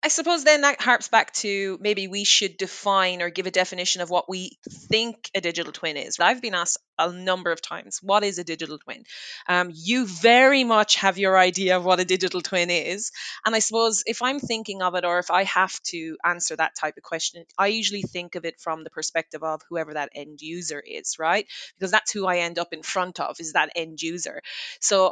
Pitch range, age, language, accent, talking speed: 165-195 Hz, 20-39, English, Irish, 225 wpm